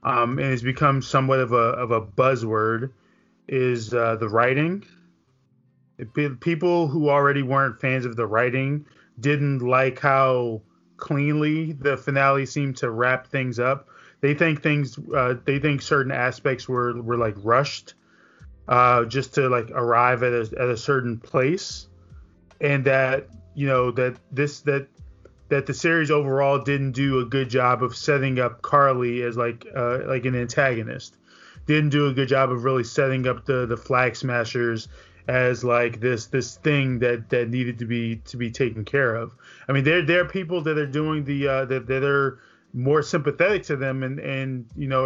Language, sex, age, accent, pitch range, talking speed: English, male, 20-39, American, 125-140 Hz, 175 wpm